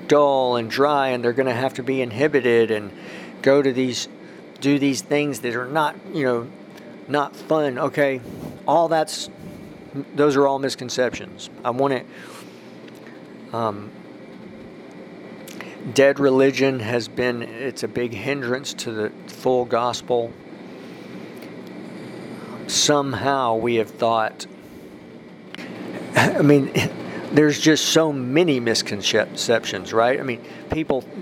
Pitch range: 115-140 Hz